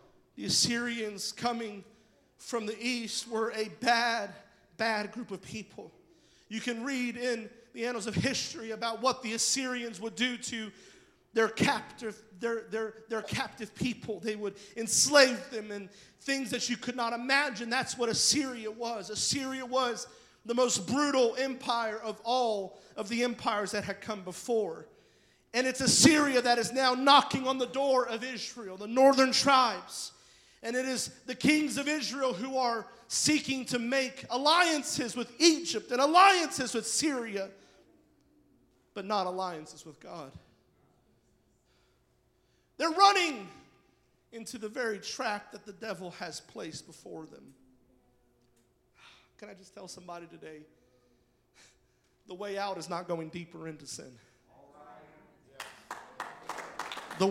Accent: American